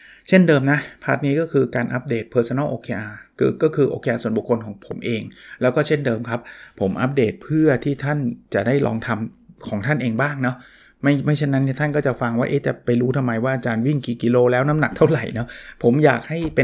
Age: 20-39